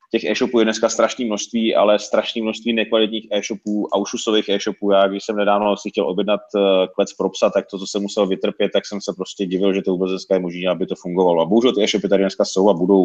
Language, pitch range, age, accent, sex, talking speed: Czech, 95-115 Hz, 30-49, native, male, 225 wpm